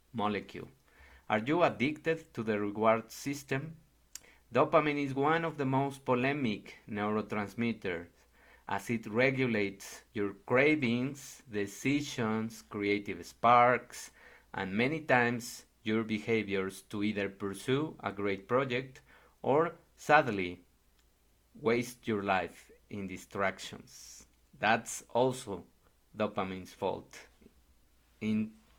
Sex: male